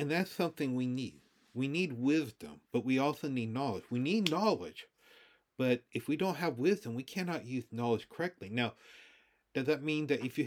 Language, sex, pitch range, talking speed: English, male, 120-155 Hz, 195 wpm